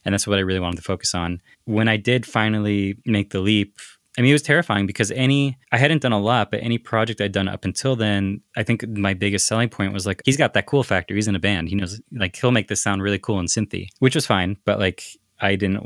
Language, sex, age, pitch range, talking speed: English, male, 20-39, 95-115 Hz, 270 wpm